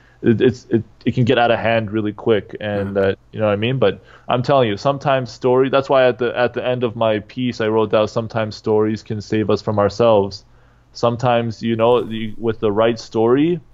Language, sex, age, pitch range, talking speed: English, male, 20-39, 110-125 Hz, 220 wpm